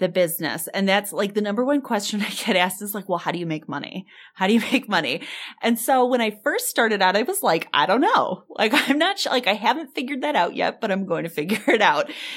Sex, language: female, English